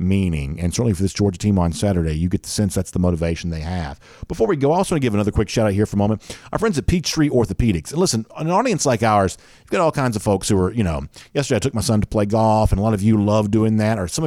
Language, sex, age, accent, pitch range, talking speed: English, male, 50-69, American, 95-125 Hz, 305 wpm